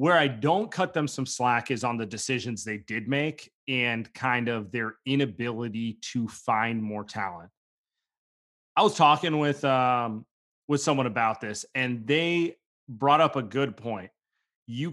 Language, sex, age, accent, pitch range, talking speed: English, male, 30-49, American, 115-150 Hz, 160 wpm